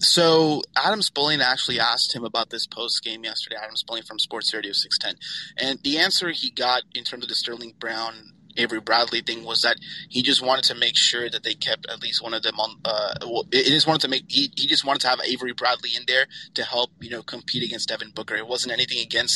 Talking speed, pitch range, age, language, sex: 230 wpm, 120-145 Hz, 30-49, English, male